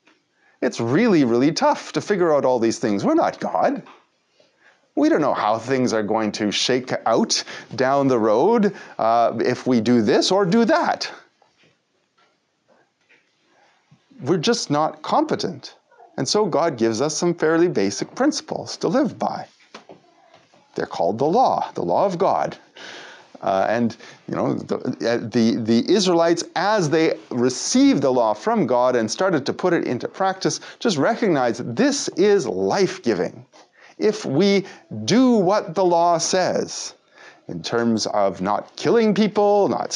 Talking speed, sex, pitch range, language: 150 wpm, male, 125-205 Hz, English